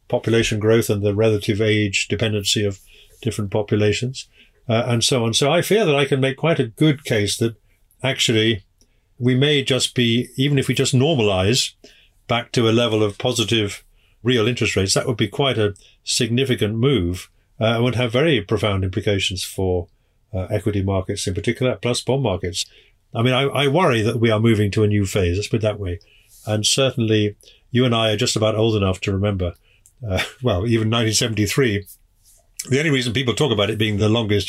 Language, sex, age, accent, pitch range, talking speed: English, male, 50-69, British, 100-125 Hz, 195 wpm